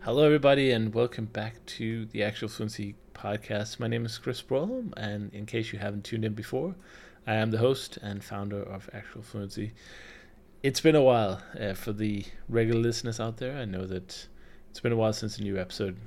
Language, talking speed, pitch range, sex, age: English, 200 wpm, 95-115 Hz, male, 20-39